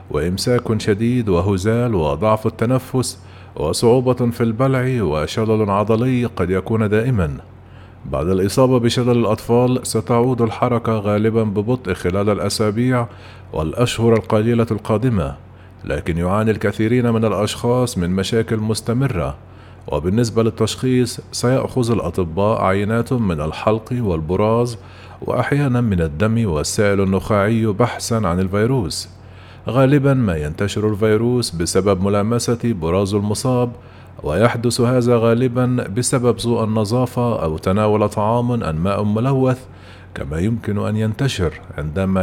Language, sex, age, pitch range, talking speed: Arabic, male, 40-59, 95-120 Hz, 105 wpm